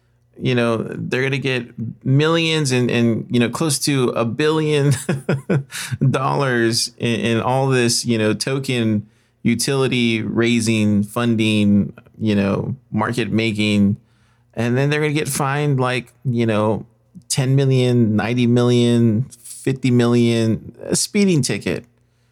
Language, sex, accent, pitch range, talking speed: English, male, American, 110-130 Hz, 130 wpm